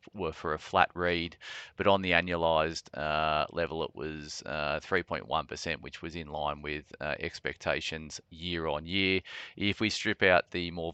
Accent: Australian